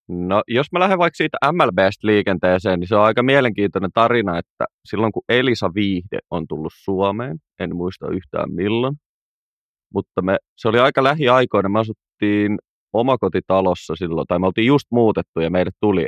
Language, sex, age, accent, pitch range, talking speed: Finnish, male, 30-49, native, 95-125 Hz, 165 wpm